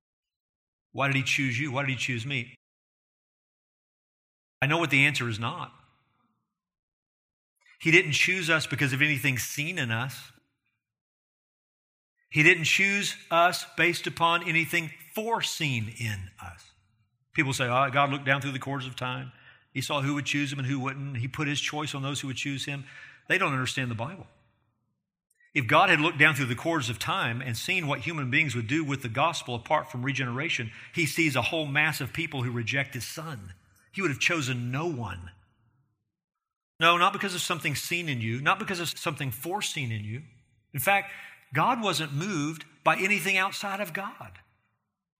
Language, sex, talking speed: English, male, 180 wpm